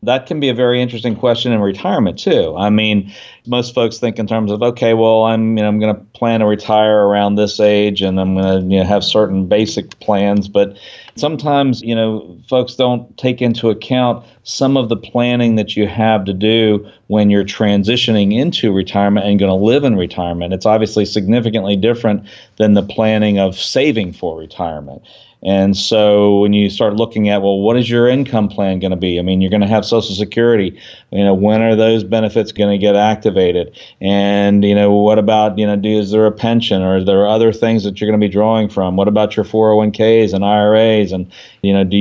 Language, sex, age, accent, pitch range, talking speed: English, male, 40-59, American, 100-110 Hz, 215 wpm